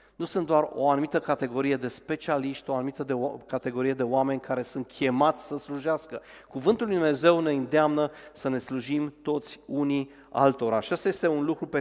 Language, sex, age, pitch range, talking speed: Romanian, male, 40-59, 125-150 Hz, 190 wpm